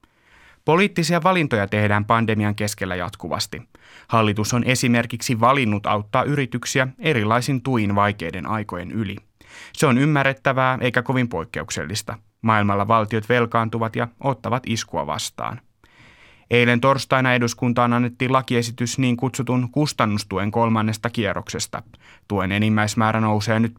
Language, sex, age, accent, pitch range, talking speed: Finnish, male, 30-49, native, 105-125 Hz, 110 wpm